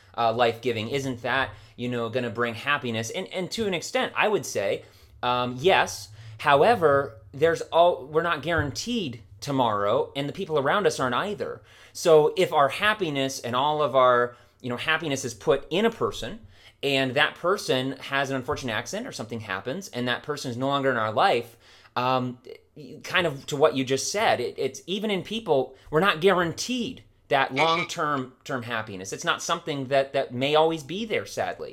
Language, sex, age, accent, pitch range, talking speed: English, male, 30-49, American, 115-160 Hz, 190 wpm